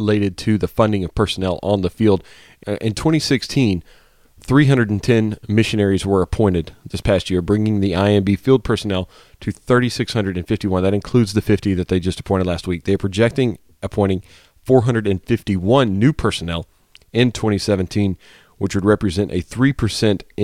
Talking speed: 140 wpm